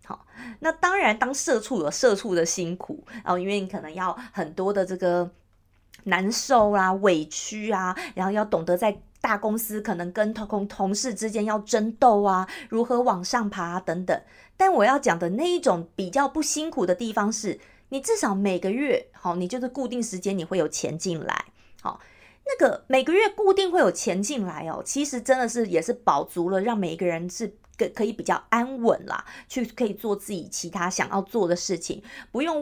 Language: Chinese